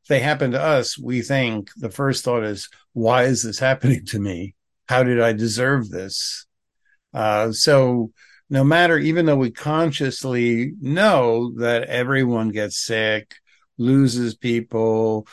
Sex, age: male, 60-79